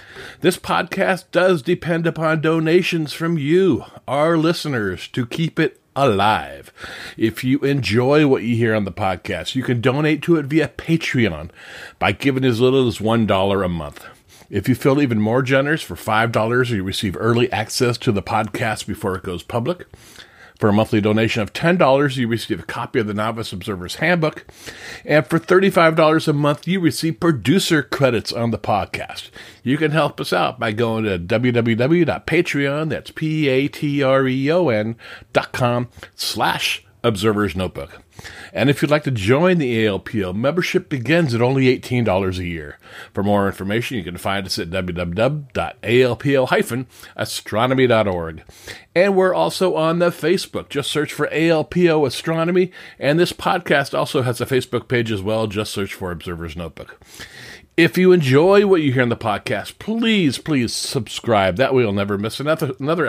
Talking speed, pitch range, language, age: 160 wpm, 110-160 Hz, English, 50-69